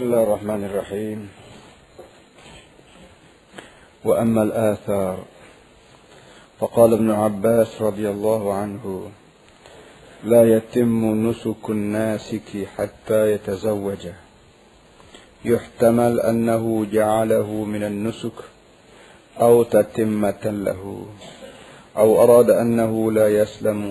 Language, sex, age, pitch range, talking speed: Malay, male, 50-69, 100-110 Hz, 80 wpm